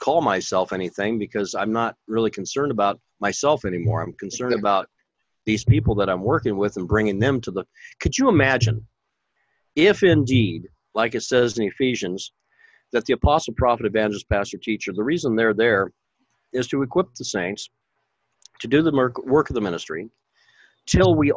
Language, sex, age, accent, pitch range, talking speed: English, male, 50-69, American, 105-130 Hz, 170 wpm